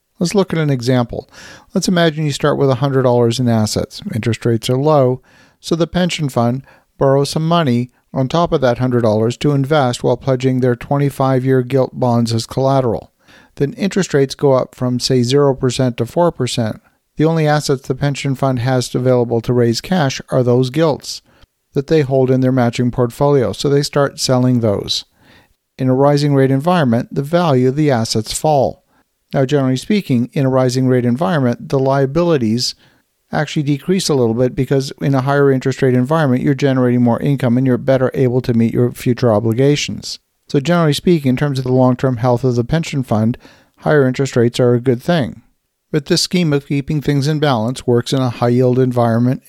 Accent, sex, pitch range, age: American, male, 125-145 Hz, 50-69